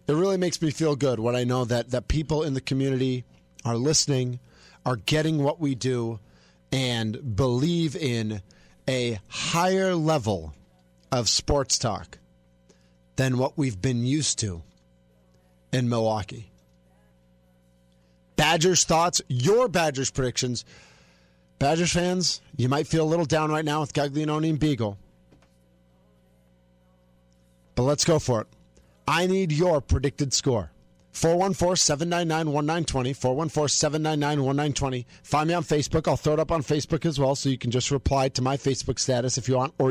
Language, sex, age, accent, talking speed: English, male, 40-59, American, 145 wpm